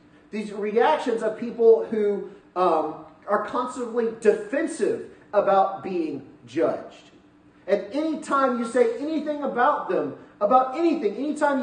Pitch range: 190-260 Hz